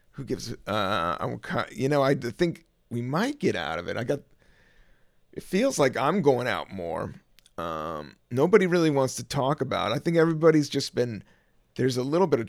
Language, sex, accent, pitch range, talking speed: English, male, American, 110-155 Hz, 200 wpm